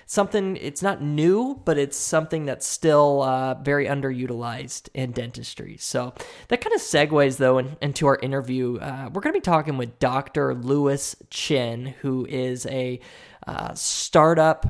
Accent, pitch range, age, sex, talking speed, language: American, 130-150 Hz, 20-39, male, 160 wpm, English